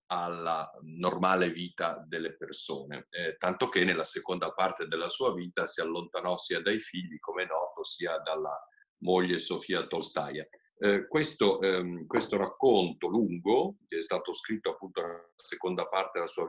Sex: male